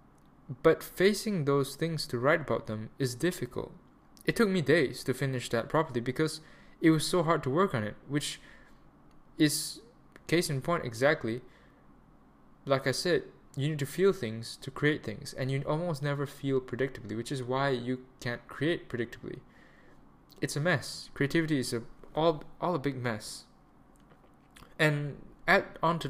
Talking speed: 165 wpm